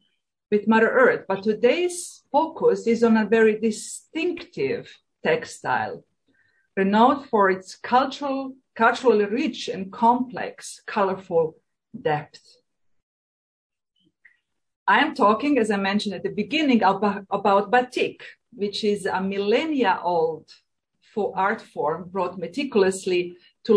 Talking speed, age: 110 wpm, 40-59